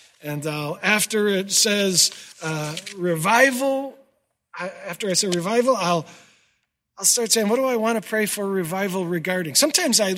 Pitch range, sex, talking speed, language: 165-230 Hz, male, 145 wpm, English